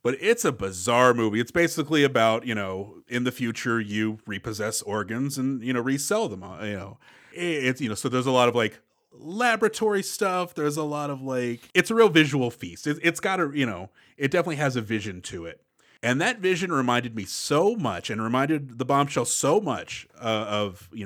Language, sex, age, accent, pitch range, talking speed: English, male, 30-49, American, 115-165 Hz, 205 wpm